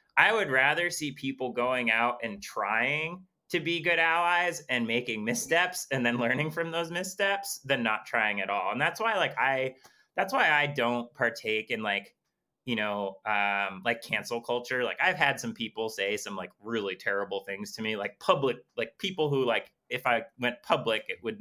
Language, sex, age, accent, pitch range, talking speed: English, male, 20-39, American, 115-150 Hz, 195 wpm